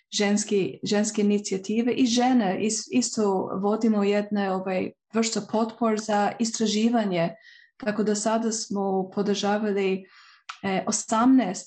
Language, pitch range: Croatian, 195-230 Hz